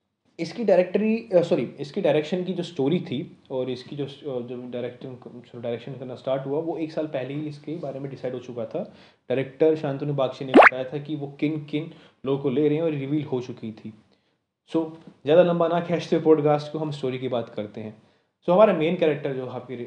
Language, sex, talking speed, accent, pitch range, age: Hindi, male, 215 wpm, native, 130-165 Hz, 30-49